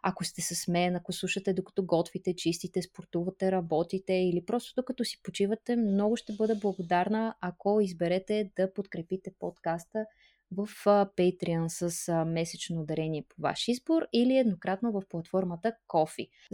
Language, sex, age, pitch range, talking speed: Bulgarian, female, 20-39, 185-215 Hz, 140 wpm